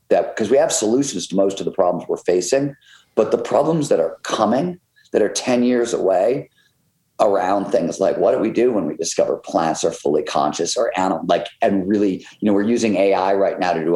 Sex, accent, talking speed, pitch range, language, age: male, American, 220 wpm, 95-115 Hz, English, 50-69